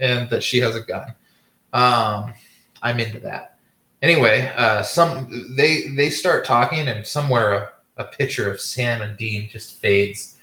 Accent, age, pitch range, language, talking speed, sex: American, 20-39, 110-135 Hz, English, 160 wpm, male